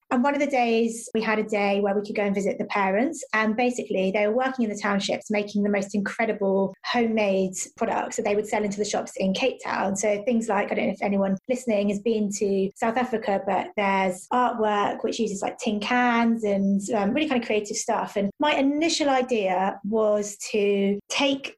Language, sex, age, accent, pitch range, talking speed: English, female, 20-39, British, 200-245 Hz, 215 wpm